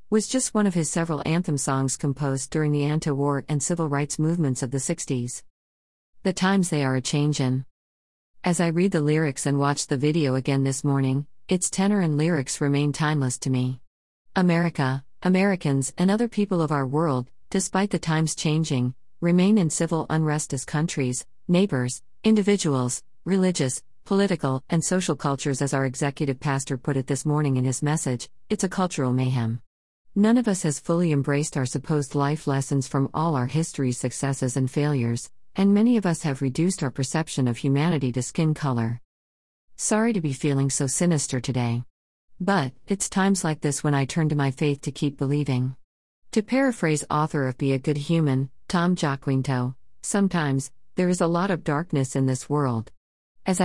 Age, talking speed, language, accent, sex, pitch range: 50-69, 180 wpm, English, American, female, 130-170 Hz